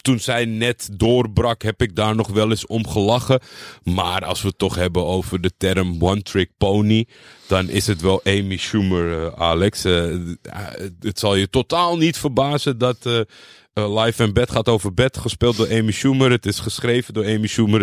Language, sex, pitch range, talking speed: Dutch, male, 95-115 Hz, 190 wpm